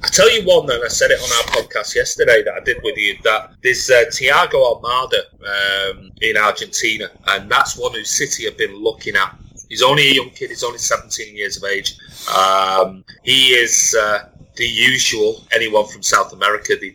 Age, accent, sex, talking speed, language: 30-49, British, male, 200 wpm, English